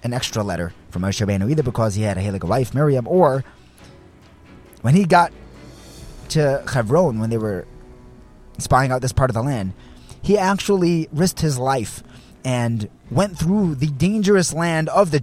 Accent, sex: American, male